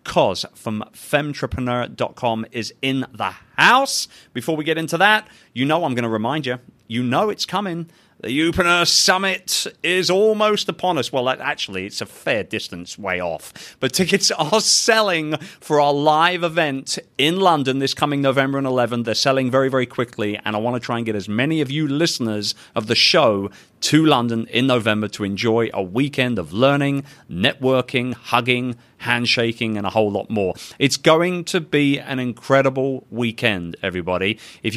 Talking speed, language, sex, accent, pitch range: 175 wpm, English, male, British, 110-155 Hz